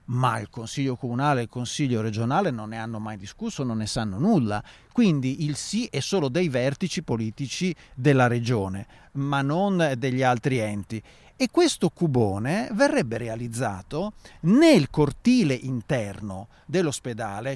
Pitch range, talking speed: 120-165 Hz, 140 wpm